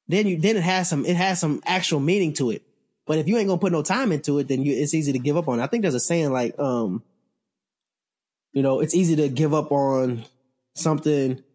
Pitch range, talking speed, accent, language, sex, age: 130-165 Hz, 250 wpm, American, English, male, 20-39